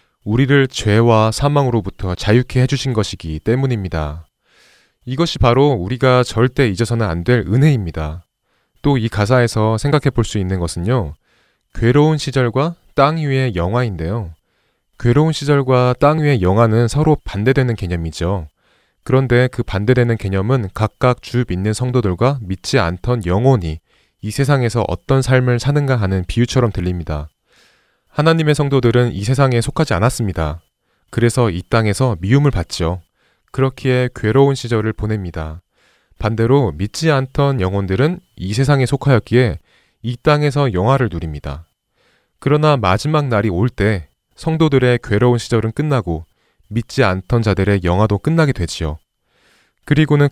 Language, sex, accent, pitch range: Korean, male, native, 95-135 Hz